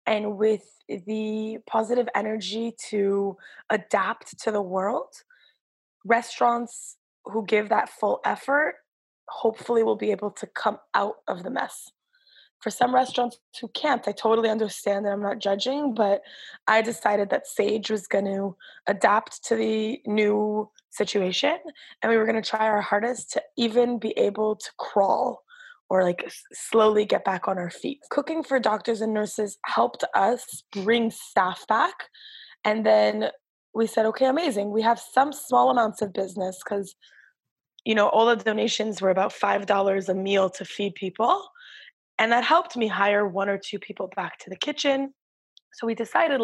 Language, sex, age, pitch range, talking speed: French, female, 20-39, 205-240 Hz, 165 wpm